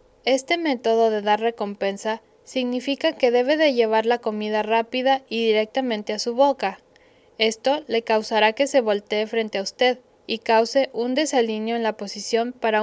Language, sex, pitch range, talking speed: Spanish, female, 215-255 Hz, 165 wpm